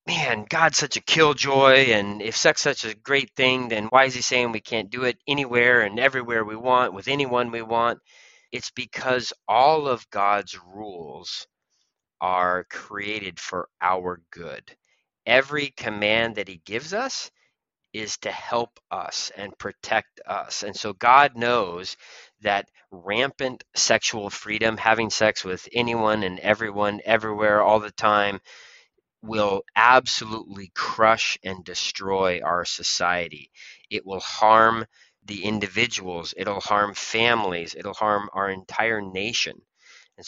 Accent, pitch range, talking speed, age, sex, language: American, 95-120 Hz, 140 wpm, 30-49, male, English